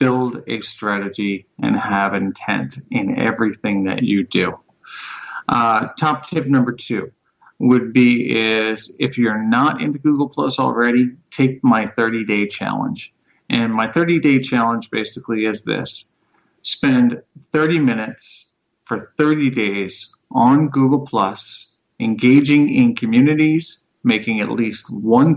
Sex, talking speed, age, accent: male, 125 wpm, 40-59, American